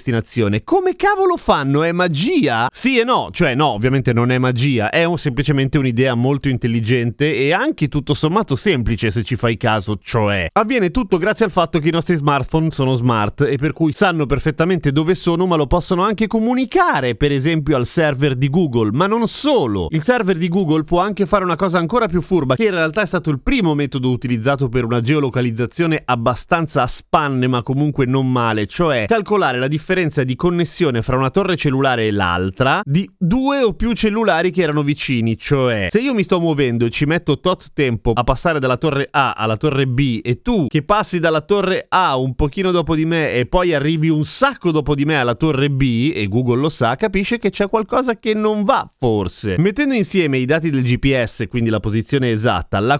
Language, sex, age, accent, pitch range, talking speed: Italian, male, 30-49, native, 130-185 Hz, 205 wpm